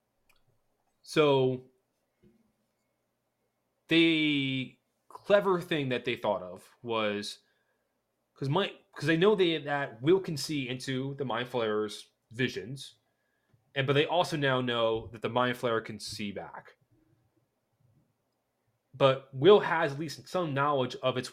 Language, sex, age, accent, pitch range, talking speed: English, male, 30-49, American, 115-140 Hz, 125 wpm